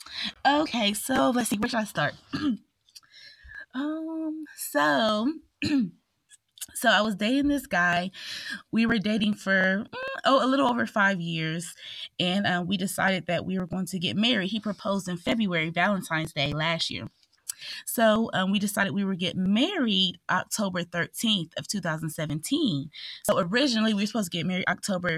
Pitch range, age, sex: 175-230 Hz, 20-39, female